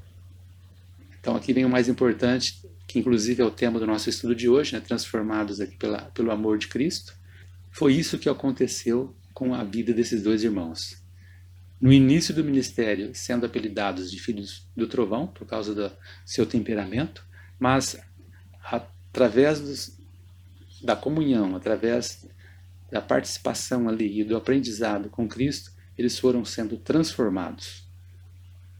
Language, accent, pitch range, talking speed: Portuguese, Brazilian, 90-125 Hz, 140 wpm